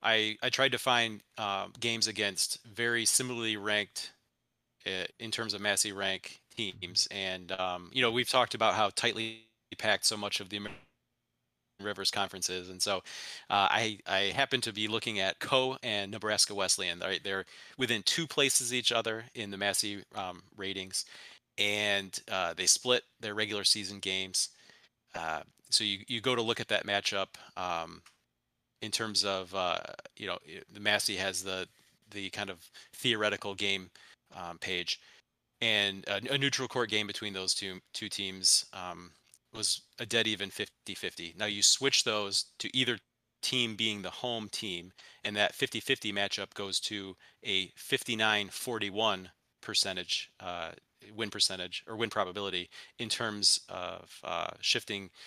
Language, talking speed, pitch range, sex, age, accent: English, 160 wpm, 95-115 Hz, male, 30-49, American